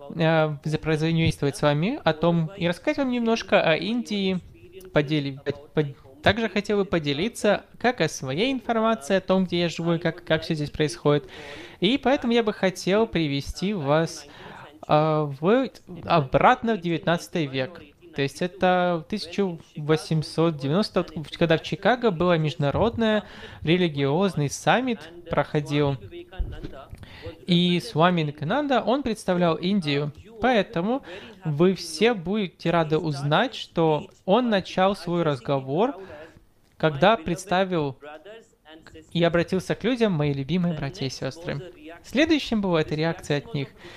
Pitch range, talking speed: 155-195 Hz, 120 wpm